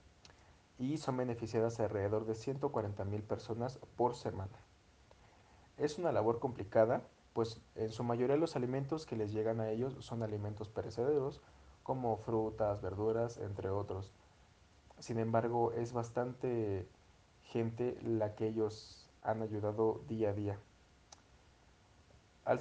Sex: male